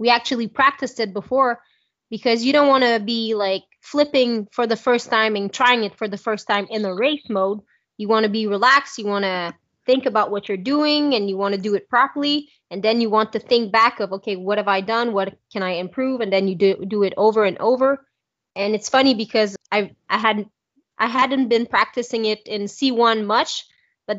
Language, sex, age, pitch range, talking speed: English, female, 20-39, 195-240 Hz, 225 wpm